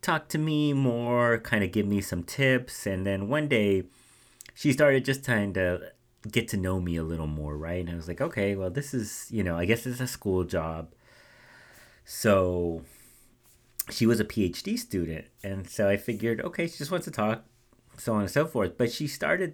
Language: English